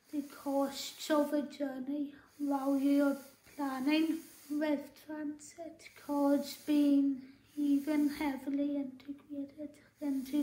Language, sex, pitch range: English, female, 275-300 Hz